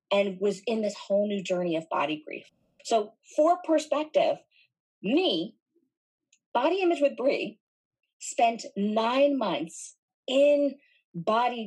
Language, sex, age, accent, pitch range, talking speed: English, female, 30-49, American, 185-285 Hz, 120 wpm